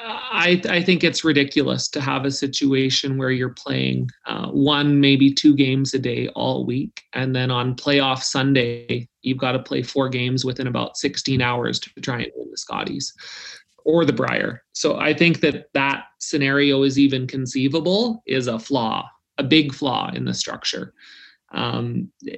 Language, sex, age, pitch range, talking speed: English, male, 30-49, 125-145 Hz, 170 wpm